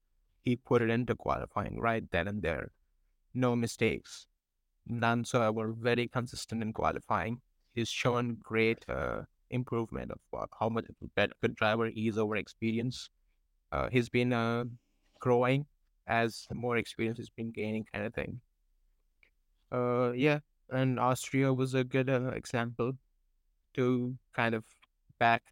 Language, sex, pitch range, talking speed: English, male, 110-120 Hz, 150 wpm